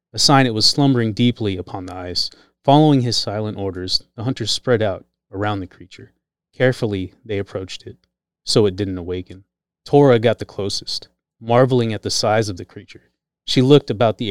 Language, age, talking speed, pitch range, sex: English, 30-49, 180 wpm, 95-120 Hz, male